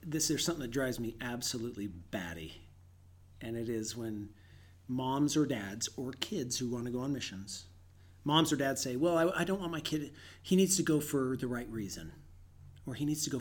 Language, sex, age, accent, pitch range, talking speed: English, male, 40-59, American, 95-150 Hz, 210 wpm